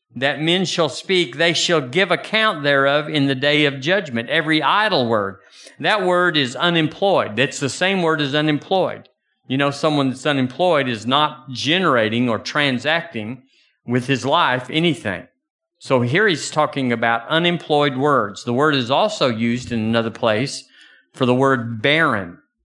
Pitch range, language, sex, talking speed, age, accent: 125-165 Hz, English, male, 160 wpm, 50-69, American